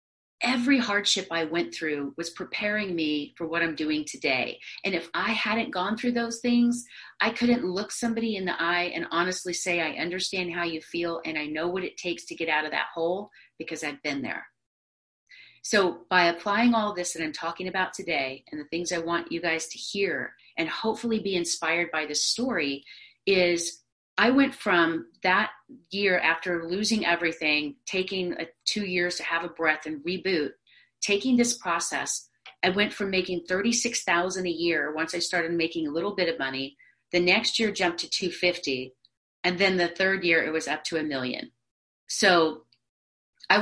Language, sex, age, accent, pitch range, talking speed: English, female, 30-49, American, 160-200 Hz, 190 wpm